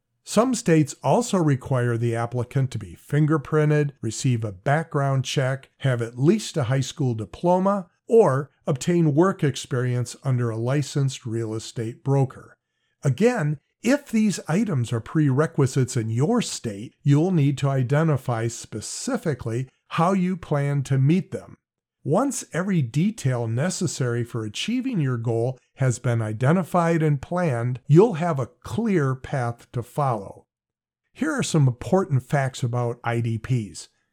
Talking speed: 135 wpm